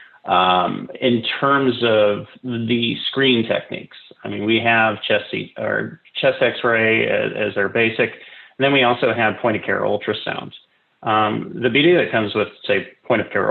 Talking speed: 155 wpm